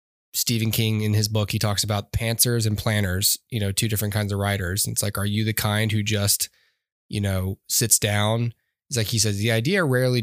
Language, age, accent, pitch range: English, 10-29, American, 105-115 Hz